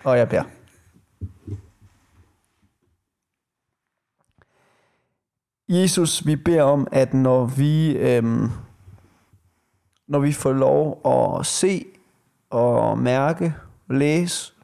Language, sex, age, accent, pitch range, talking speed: Danish, male, 30-49, native, 115-145 Hz, 80 wpm